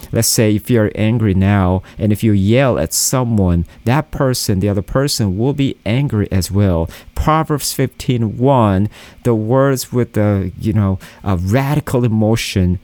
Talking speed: 160 wpm